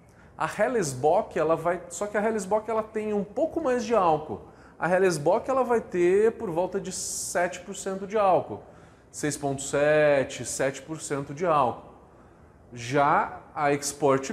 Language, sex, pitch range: Portuguese, male, 140-215 Hz